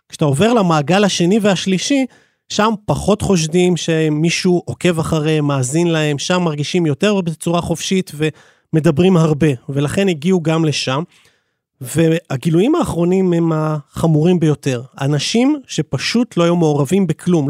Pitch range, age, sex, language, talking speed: 155-180 Hz, 30-49, male, Hebrew, 120 wpm